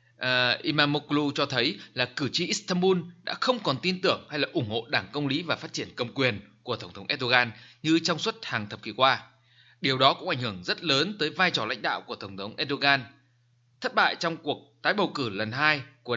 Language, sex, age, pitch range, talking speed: Vietnamese, male, 20-39, 120-155 Hz, 230 wpm